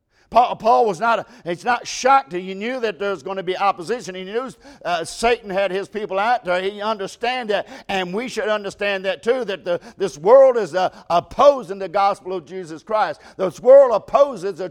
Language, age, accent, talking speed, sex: English, 50-69, American, 200 wpm, male